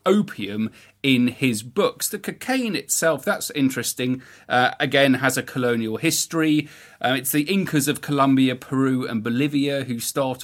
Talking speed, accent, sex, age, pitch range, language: 150 wpm, British, male, 40-59, 115-145 Hz, English